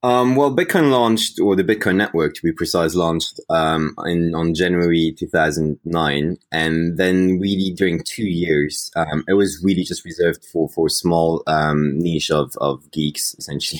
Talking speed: 165 wpm